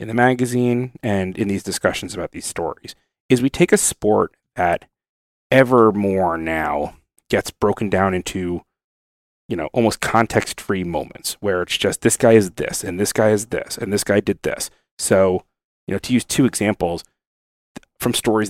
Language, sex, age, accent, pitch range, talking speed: English, male, 30-49, American, 95-120 Hz, 175 wpm